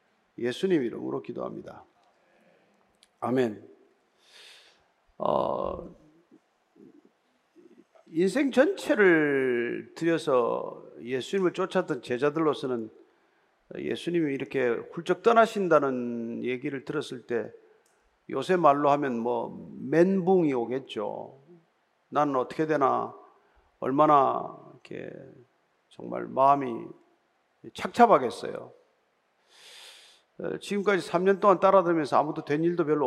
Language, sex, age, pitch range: Korean, male, 50-69, 135-215 Hz